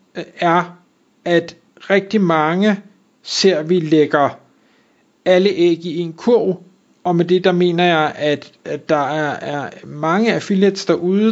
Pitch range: 150-185 Hz